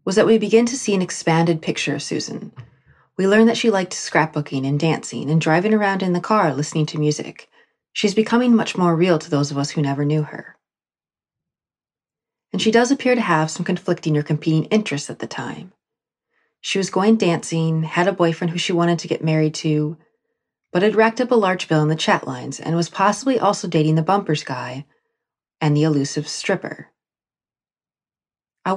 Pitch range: 150-195 Hz